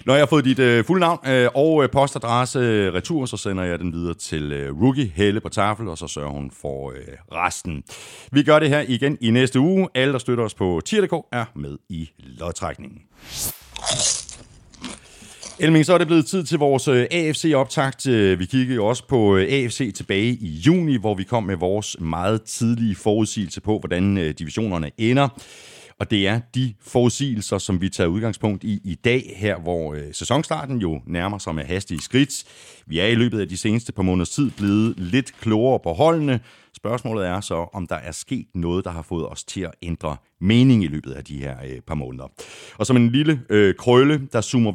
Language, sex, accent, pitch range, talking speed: Danish, male, native, 85-130 Hz, 190 wpm